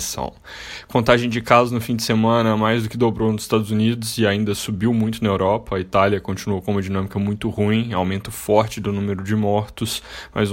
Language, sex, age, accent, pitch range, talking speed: Portuguese, male, 10-29, Brazilian, 100-110 Hz, 200 wpm